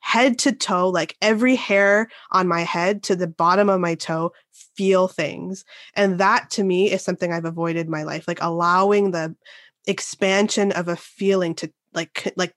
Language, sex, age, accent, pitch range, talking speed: English, female, 20-39, American, 170-210 Hz, 180 wpm